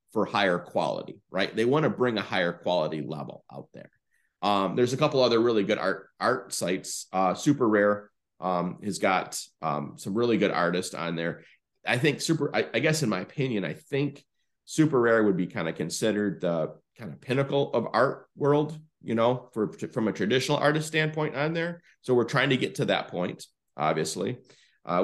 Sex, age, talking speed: male, 30-49, 195 wpm